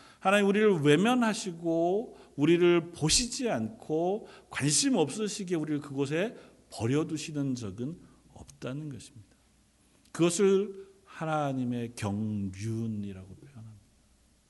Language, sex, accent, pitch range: Korean, male, native, 125-190 Hz